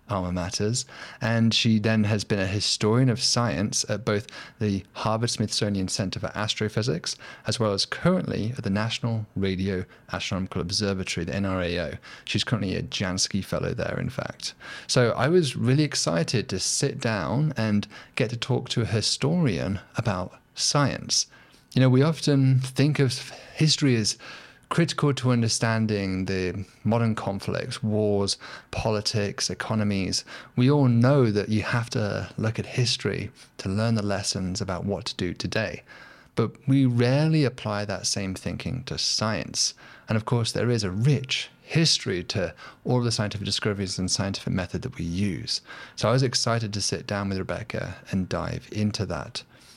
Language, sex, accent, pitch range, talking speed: English, male, British, 100-125 Hz, 160 wpm